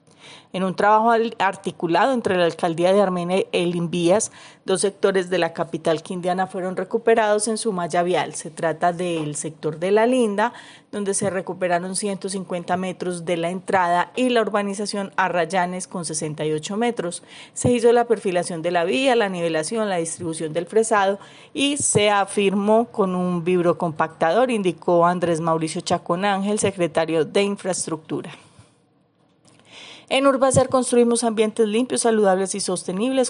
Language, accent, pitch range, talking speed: Spanish, Colombian, 175-215 Hz, 145 wpm